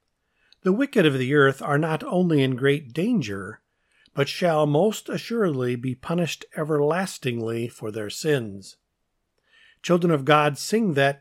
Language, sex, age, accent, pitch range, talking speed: English, male, 50-69, American, 125-175 Hz, 140 wpm